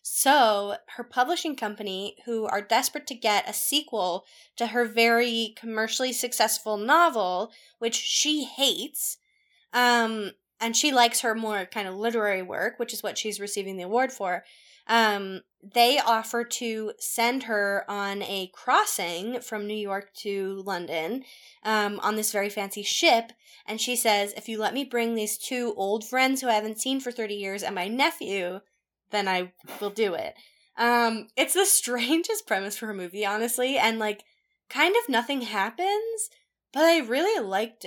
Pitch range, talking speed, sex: 205-255 Hz, 165 wpm, female